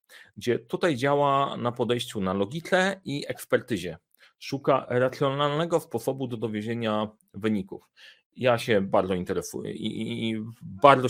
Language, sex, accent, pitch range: Polish, male, native, 110-140 Hz